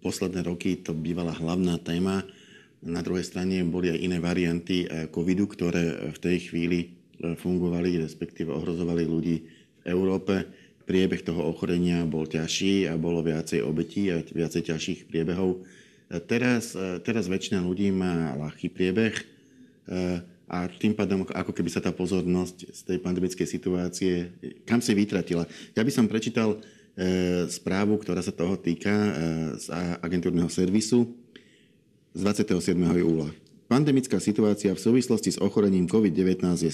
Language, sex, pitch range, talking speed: Slovak, male, 85-100 Hz, 135 wpm